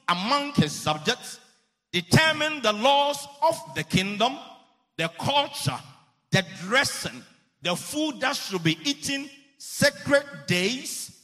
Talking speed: 110 wpm